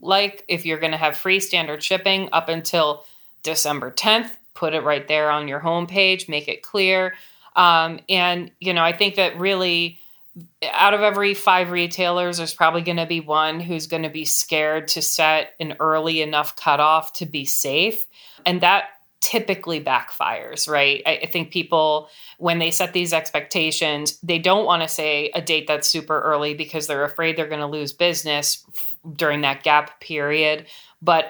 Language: English